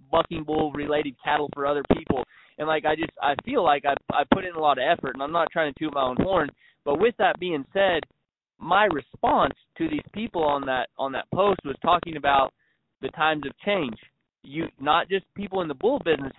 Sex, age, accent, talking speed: male, 20-39, American, 225 wpm